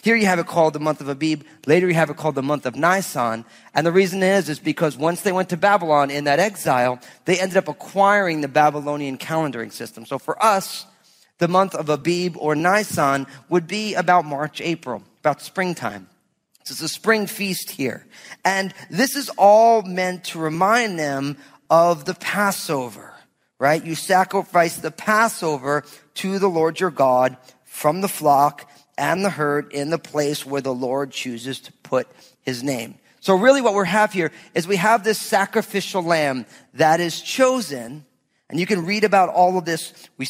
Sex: male